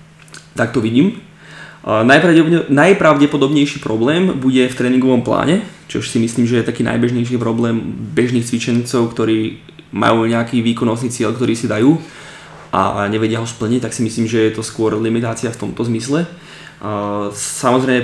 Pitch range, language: 115-150 Hz, Slovak